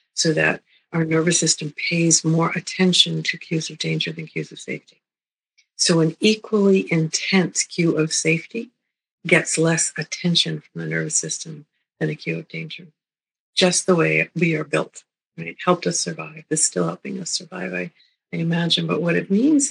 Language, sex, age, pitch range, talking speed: English, female, 50-69, 155-185 Hz, 170 wpm